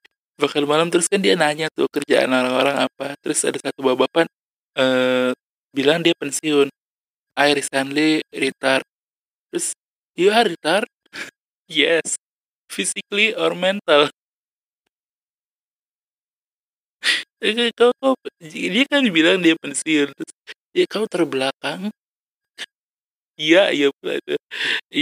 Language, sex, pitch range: Indonesian, male, 135-220 Hz